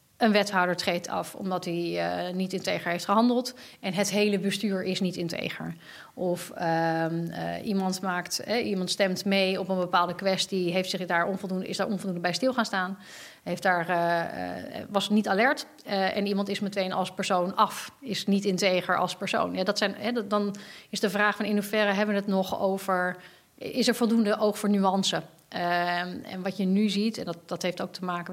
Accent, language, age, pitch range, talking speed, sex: Dutch, Dutch, 30-49, 180-210 Hz, 205 wpm, female